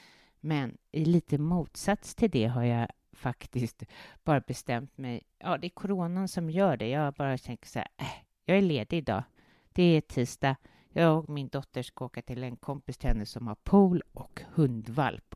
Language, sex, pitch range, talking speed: English, female, 120-165 Hz, 180 wpm